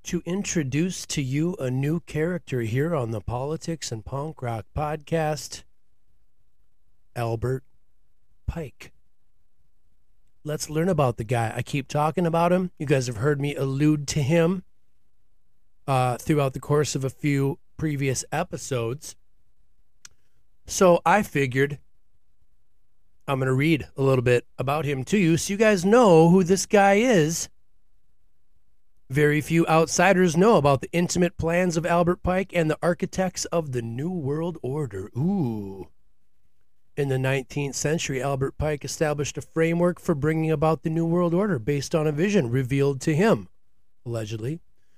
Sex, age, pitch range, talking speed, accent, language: male, 30-49, 115-170 Hz, 145 wpm, American, English